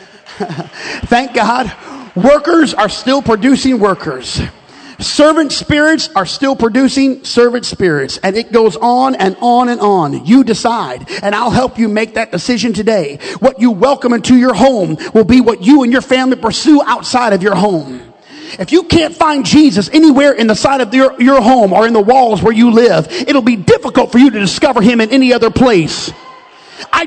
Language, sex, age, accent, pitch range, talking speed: English, male, 40-59, American, 225-285 Hz, 185 wpm